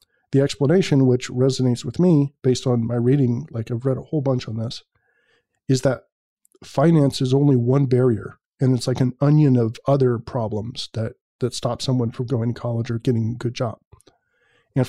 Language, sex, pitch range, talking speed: English, male, 120-140 Hz, 190 wpm